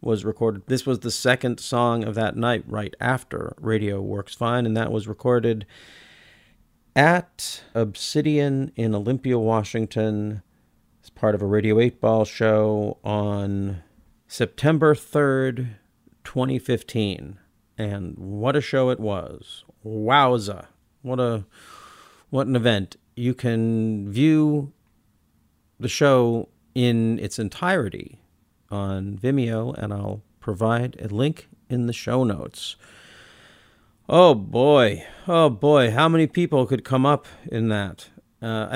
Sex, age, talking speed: male, 40-59, 125 wpm